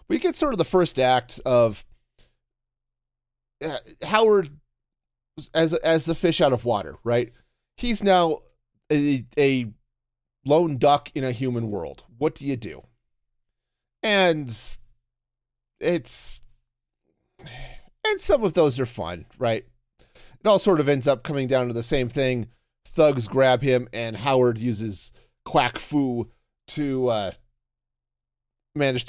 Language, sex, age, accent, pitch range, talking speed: English, male, 30-49, American, 120-155 Hz, 130 wpm